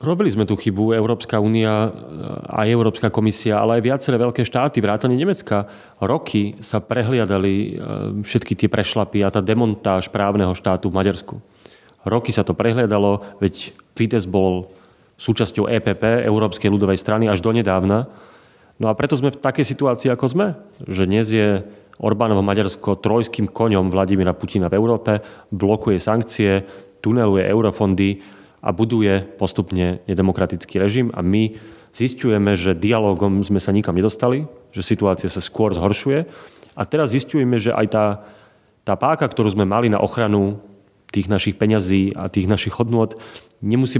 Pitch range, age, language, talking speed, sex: 100-115 Hz, 30-49, Slovak, 145 wpm, male